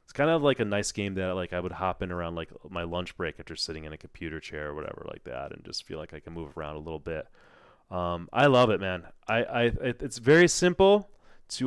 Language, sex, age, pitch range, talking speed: English, male, 30-49, 90-110 Hz, 255 wpm